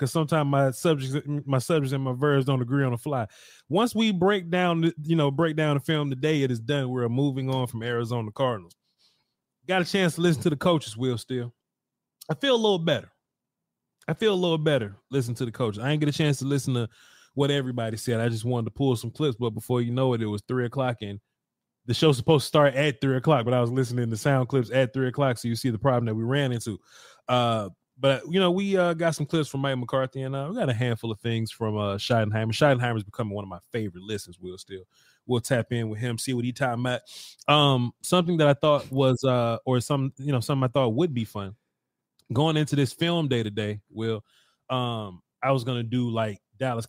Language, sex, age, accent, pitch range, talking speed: English, male, 20-39, American, 120-145 Hz, 240 wpm